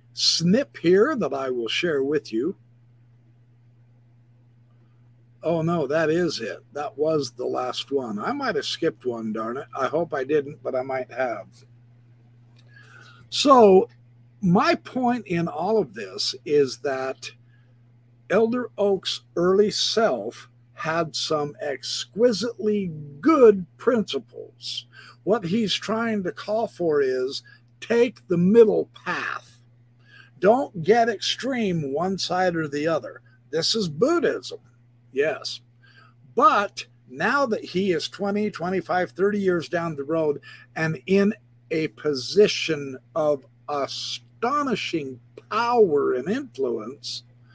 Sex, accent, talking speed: male, American, 120 wpm